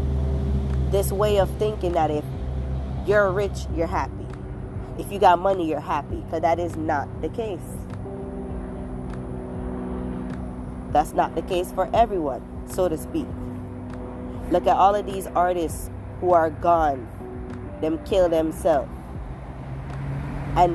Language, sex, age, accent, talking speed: English, female, 20-39, American, 125 wpm